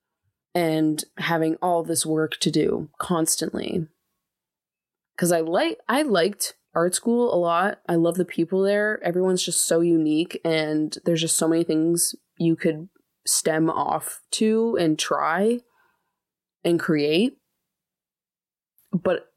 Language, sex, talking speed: English, female, 130 wpm